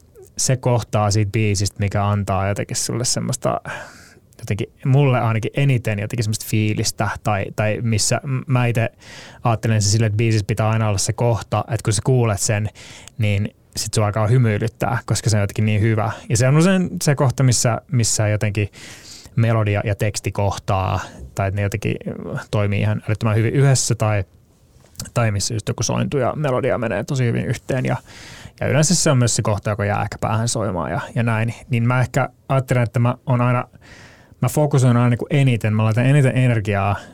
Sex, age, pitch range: male, 20-39, 105-125 Hz